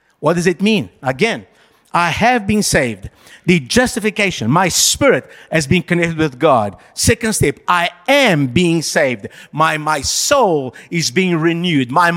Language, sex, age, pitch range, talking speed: English, male, 50-69, 165-245 Hz, 155 wpm